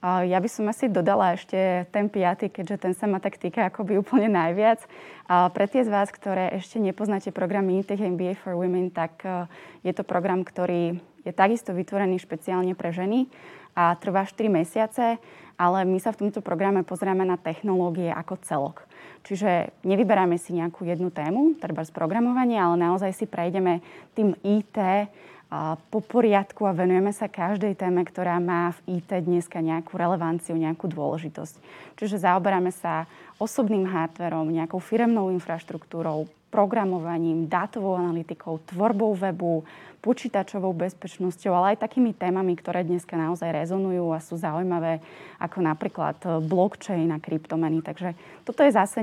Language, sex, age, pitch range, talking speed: English, female, 20-39, 170-205 Hz, 150 wpm